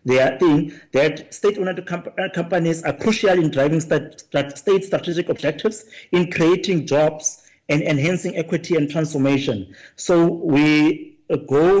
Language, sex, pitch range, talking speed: English, male, 140-175 Hz, 120 wpm